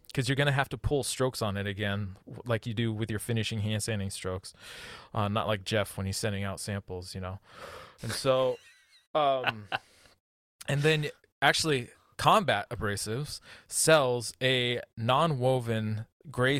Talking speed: 155 wpm